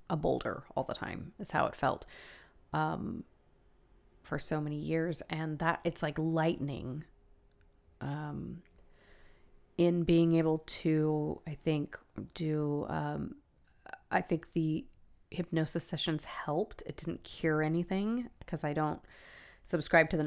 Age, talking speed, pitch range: 30-49, 130 wpm, 145-165 Hz